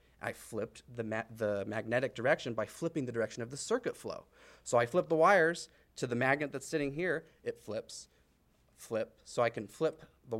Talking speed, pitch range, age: 195 wpm, 115-160 Hz, 30-49